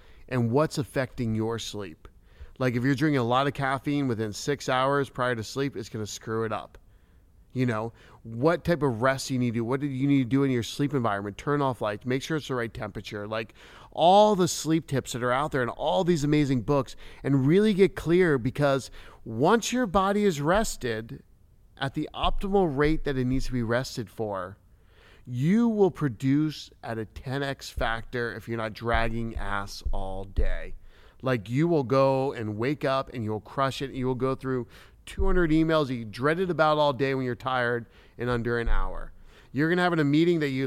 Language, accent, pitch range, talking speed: English, American, 115-150 Hz, 210 wpm